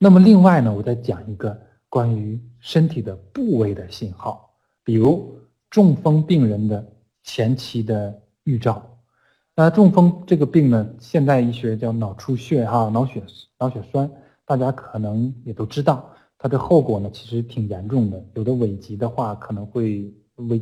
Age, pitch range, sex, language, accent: 20-39, 110-135 Hz, male, Chinese, native